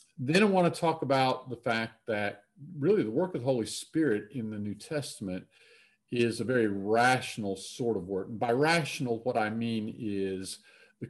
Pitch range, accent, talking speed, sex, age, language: 105-140 Hz, American, 185 wpm, male, 50-69, English